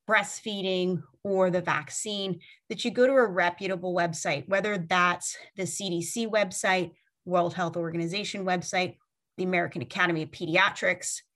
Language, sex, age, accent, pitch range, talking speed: English, female, 30-49, American, 175-205 Hz, 130 wpm